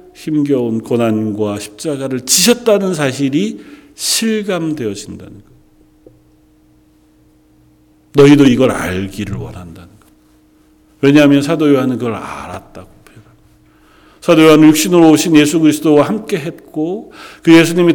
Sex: male